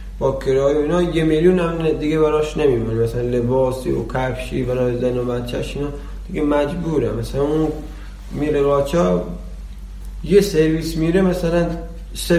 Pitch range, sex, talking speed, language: 125-150 Hz, male, 140 wpm, Persian